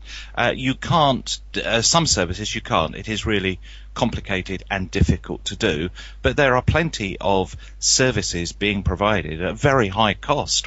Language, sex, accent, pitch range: English, male, British, 90-110 Hz